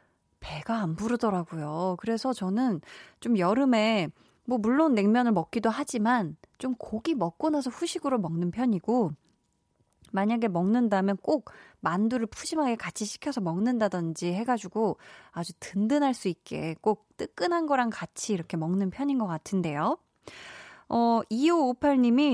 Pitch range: 190-265 Hz